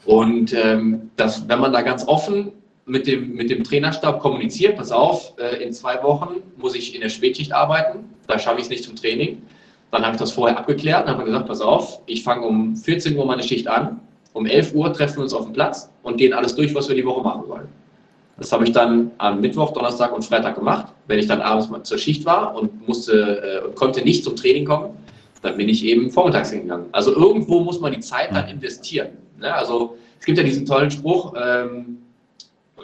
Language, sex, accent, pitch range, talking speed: German, male, German, 120-185 Hz, 215 wpm